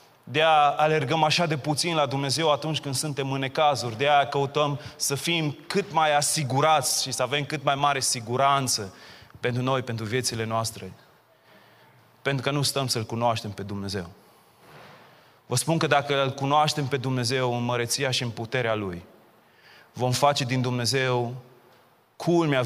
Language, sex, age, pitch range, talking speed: Romanian, male, 30-49, 115-140 Hz, 160 wpm